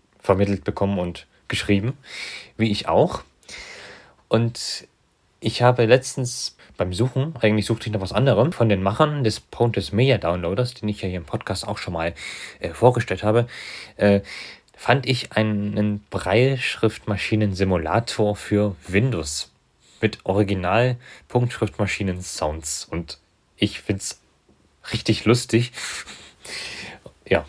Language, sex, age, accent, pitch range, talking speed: German, male, 30-49, German, 95-115 Hz, 120 wpm